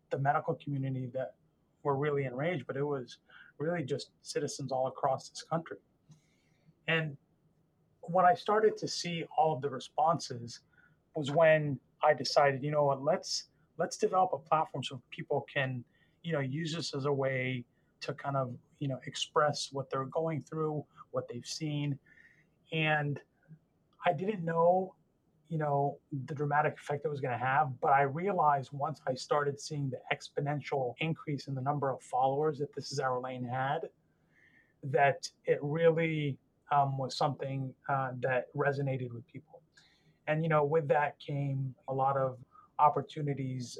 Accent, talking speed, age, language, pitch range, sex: American, 160 wpm, 30-49, English, 135-160 Hz, male